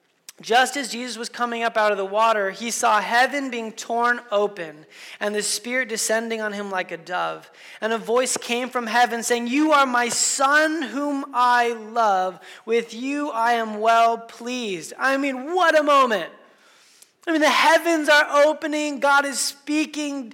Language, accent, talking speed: English, American, 175 wpm